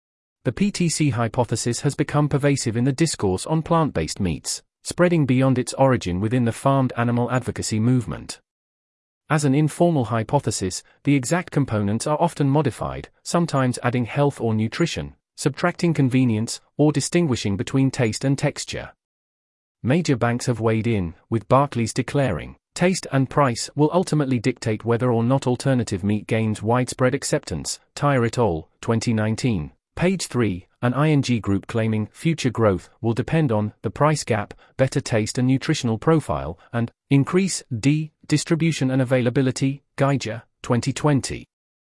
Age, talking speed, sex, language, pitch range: 30-49, 140 wpm, male, English, 115-145 Hz